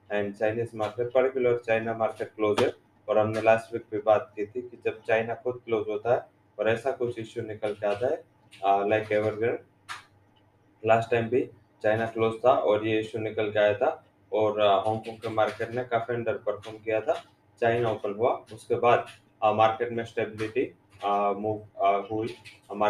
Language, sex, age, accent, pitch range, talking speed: English, male, 20-39, Indian, 105-120 Hz, 140 wpm